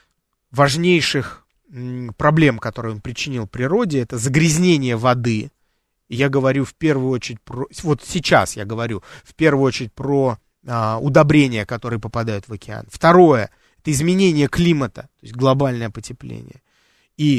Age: 30-49